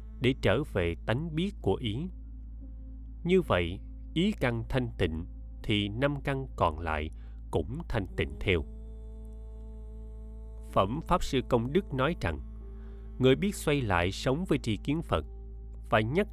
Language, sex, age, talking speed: Vietnamese, male, 20-39, 145 wpm